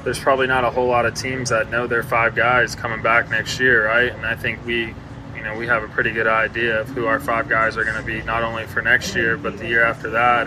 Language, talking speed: English, 280 wpm